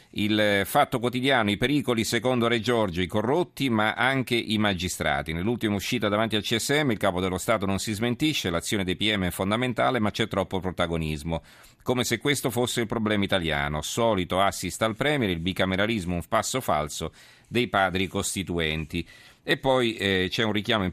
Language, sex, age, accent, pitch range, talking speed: Italian, male, 40-59, native, 90-115 Hz, 175 wpm